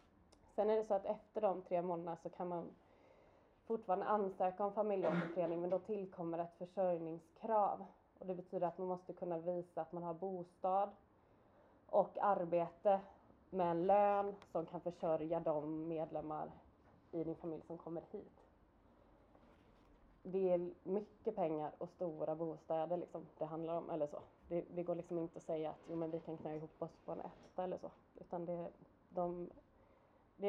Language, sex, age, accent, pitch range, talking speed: Swedish, female, 20-39, native, 165-195 Hz, 170 wpm